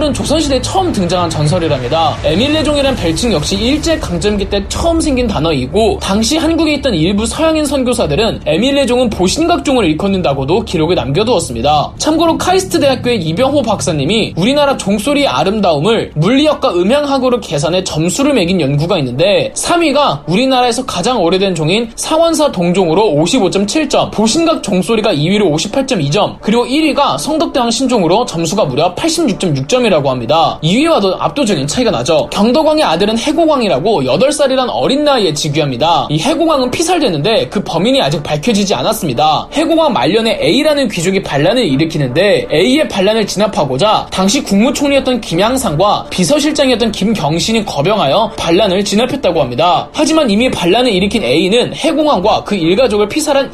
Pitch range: 180-290 Hz